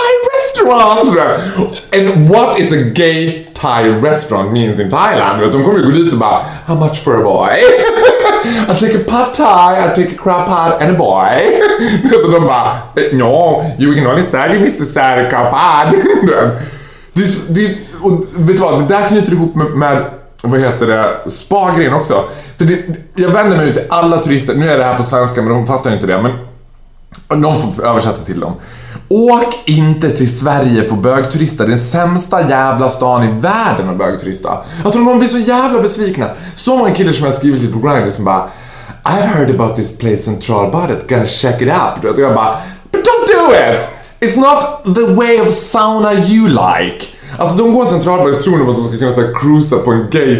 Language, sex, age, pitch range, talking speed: Swedish, male, 20-39, 125-205 Hz, 195 wpm